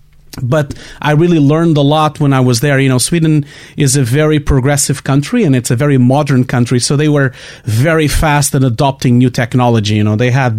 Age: 30-49